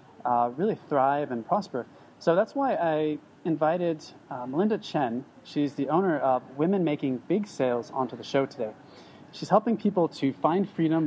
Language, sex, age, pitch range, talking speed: English, male, 30-49, 130-165 Hz, 170 wpm